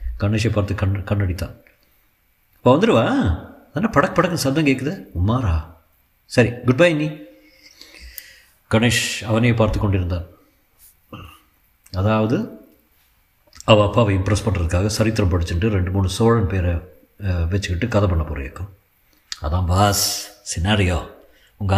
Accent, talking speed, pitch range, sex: native, 110 wpm, 90-125 Hz, male